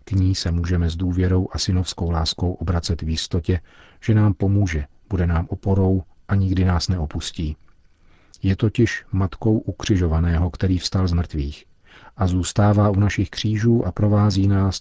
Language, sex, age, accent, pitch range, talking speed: Czech, male, 40-59, native, 85-100 Hz, 155 wpm